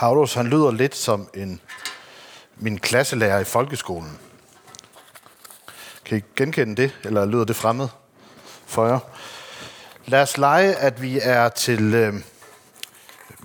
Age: 60-79